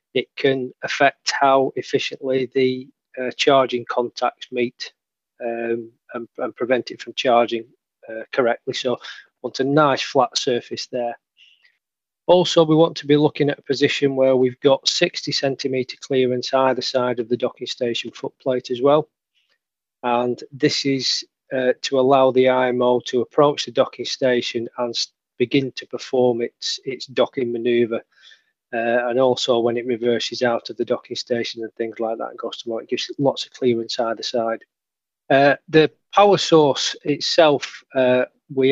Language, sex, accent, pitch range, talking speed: English, male, British, 120-140 Hz, 165 wpm